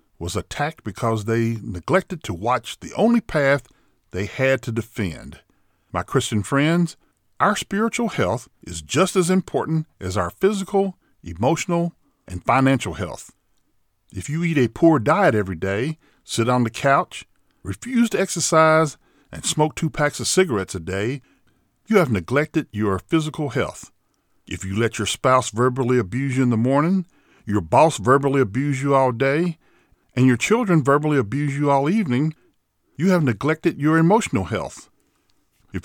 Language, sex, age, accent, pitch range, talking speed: English, male, 50-69, American, 115-165 Hz, 155 wpm